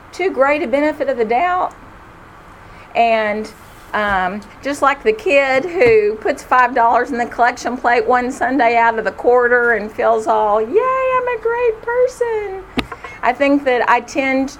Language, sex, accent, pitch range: English, female, American, 215-265 Hz